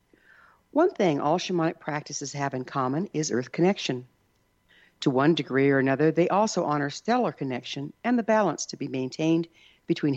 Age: 60-79